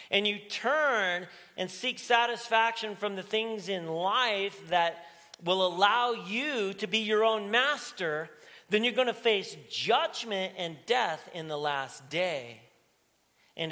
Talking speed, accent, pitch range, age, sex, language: 145 wpm, American, 140-205 Hz, 40-59, male, English